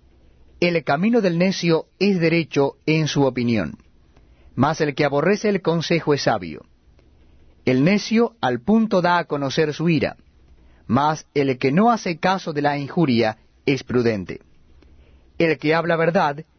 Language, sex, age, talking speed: Spanish, male, 30-49, 150 wpm